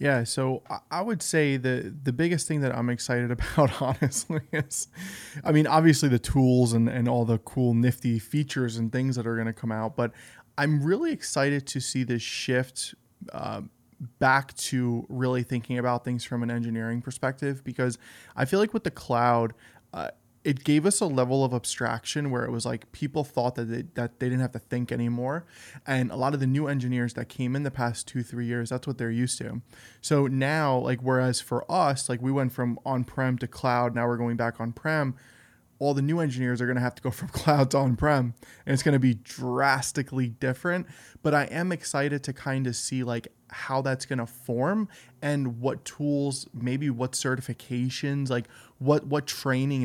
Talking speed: 205 wpm